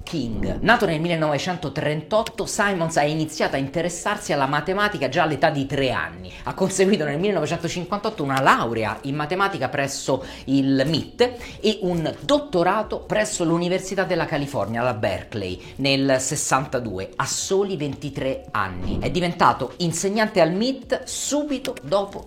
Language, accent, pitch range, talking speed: Italian, native, 140-200 Hz, 130 wpm